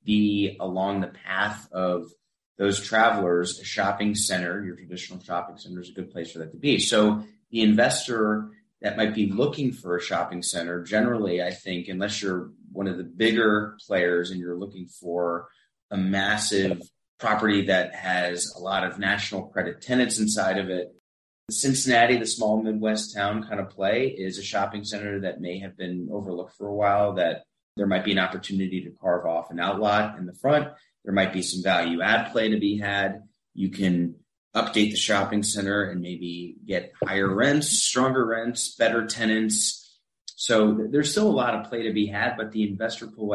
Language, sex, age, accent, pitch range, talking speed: English, male, 30-49, American, 90-105 Hz, 185 wpm